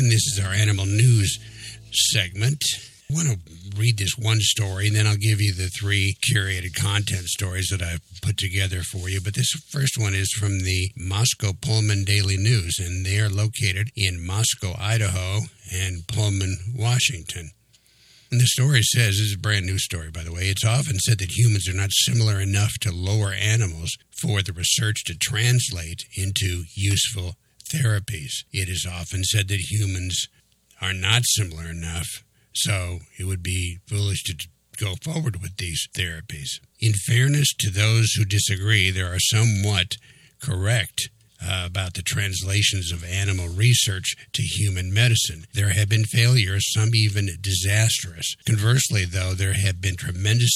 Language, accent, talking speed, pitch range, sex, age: English, American, 165 wpm, 95-115 Hz, male, 50-69